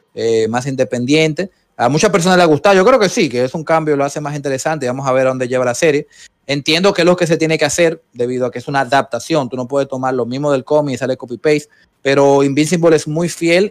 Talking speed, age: 265 wpm, 30-49